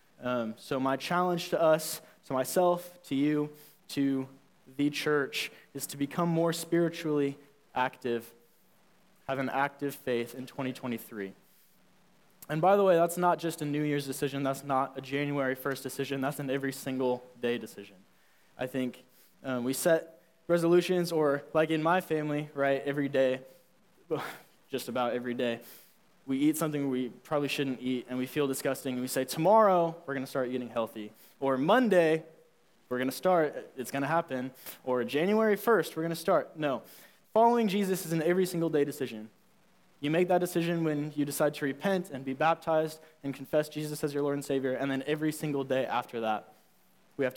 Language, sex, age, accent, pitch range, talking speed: English, male, 20-39, American, 130-165 Hz, 180 wpm